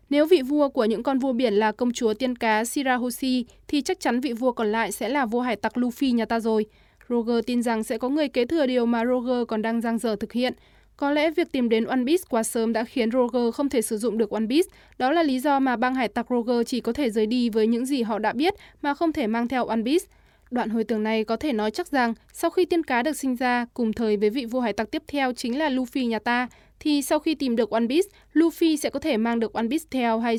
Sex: female